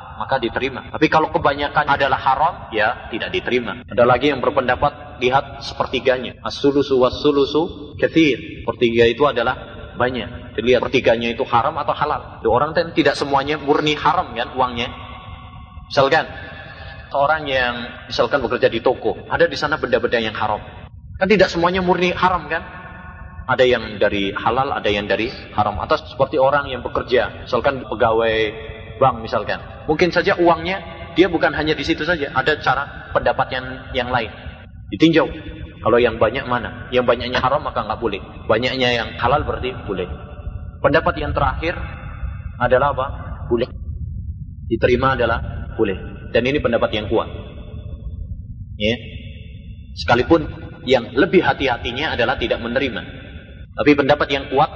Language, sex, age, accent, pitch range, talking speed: Indonesian, male, 30-49, native, 105-145 Hz, 140 wpm